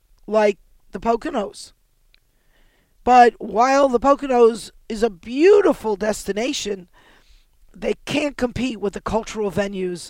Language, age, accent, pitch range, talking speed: English, 50-69, American, 210-255 Hz, 105 wpm